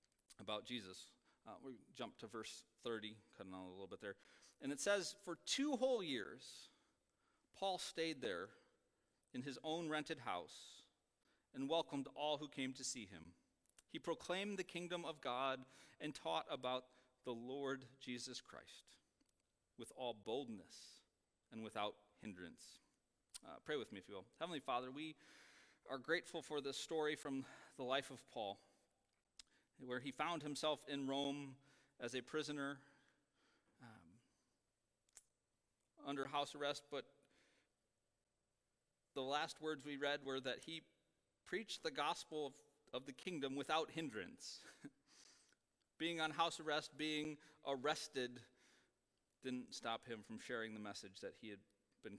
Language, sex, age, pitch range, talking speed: English, male, 40-59, 125-155 Hz, 145 wpm